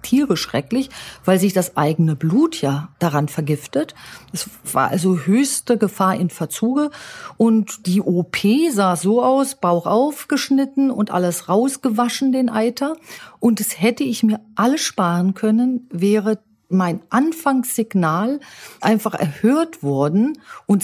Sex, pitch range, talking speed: female, 185-240 Hz, 130 wpm